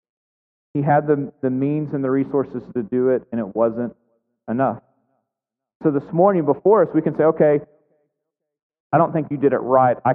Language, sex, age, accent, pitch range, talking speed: English, male, 40-59, American, 140-190 Hz, 190 wpm